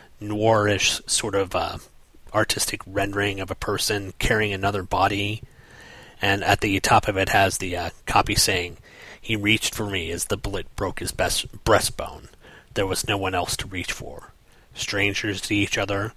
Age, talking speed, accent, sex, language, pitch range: 30-49, 170 wpm, American, male, English, 95-115 Hz